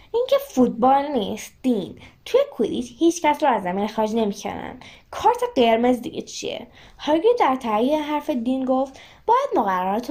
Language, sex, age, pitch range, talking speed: Persian, female, 10-29, 240-335 Hz, 135 wpm